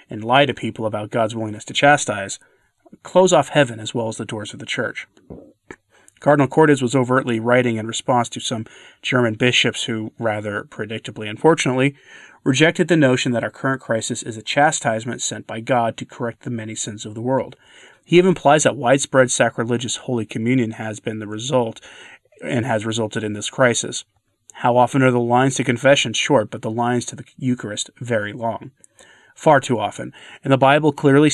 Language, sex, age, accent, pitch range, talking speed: English, male, 30-49, American, 110-135 Hz, 185 wpm